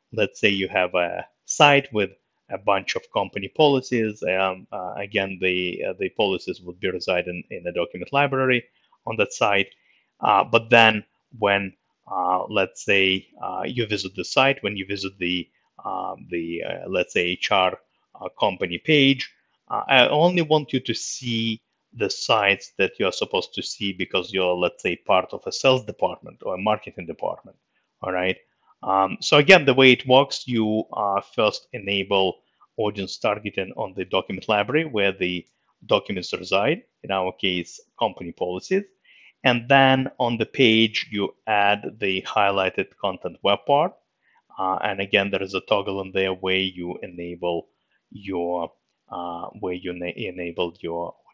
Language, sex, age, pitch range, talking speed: English, male, 30-49, 95-125 Hz, 165 wpm